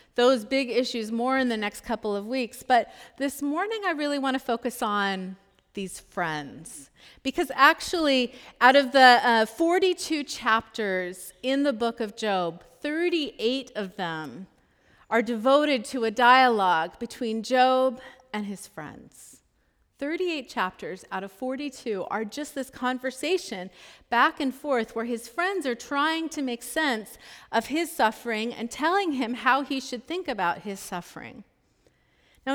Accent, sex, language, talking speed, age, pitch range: American, female, English, 150 wpm, 40-59, 210-270 Hz